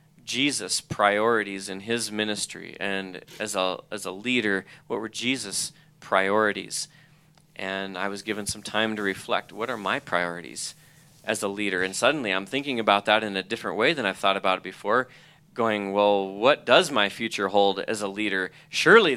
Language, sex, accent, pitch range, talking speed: English, male, American, 100-140 Hz, 180 wpm